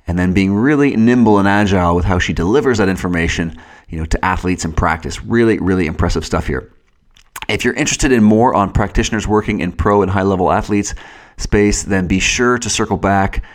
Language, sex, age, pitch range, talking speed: English, male, 30-49, 90-115 Hz, 200 wpm